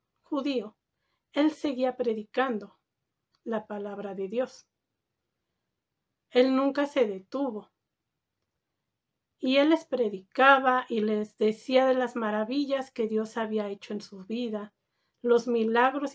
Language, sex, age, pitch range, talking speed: Spanish, female, 40-59, 215-260 Hz, 115 wpm